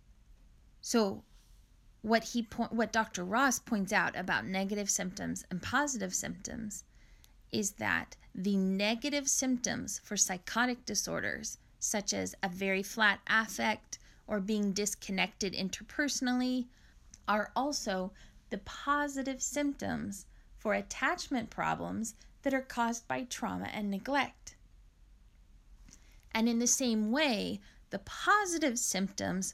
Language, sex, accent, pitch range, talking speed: English, female, American, 200-250 Hz, 110 wpm